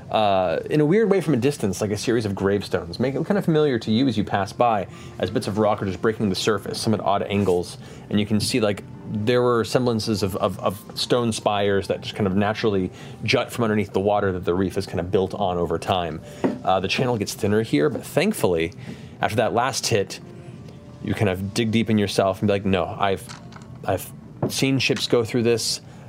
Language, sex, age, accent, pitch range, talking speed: English, male, 30-49, American, 100-130 Hz, 230 wpm